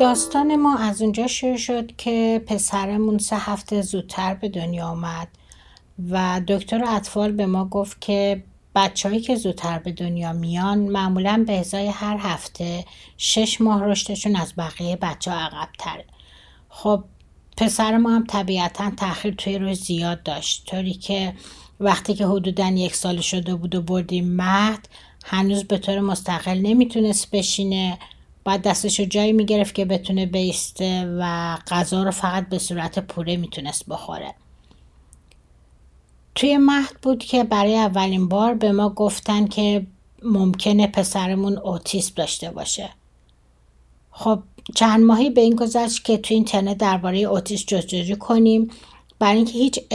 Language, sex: Persian, female